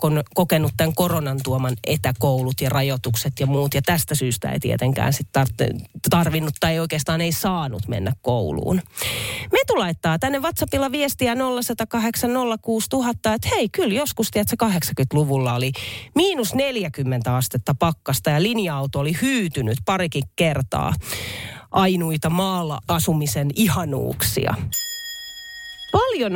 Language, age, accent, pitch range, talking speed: Finnish, 30-49, native, 140-215 Hz, 115 wpm